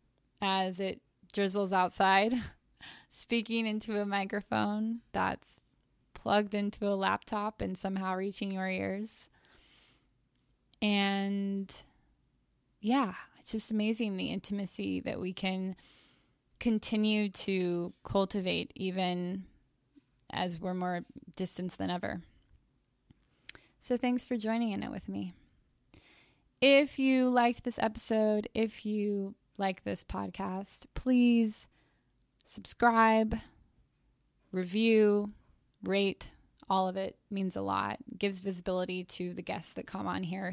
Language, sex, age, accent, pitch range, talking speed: English, female, 10-29, American, 185-220 Hz, 110 wpm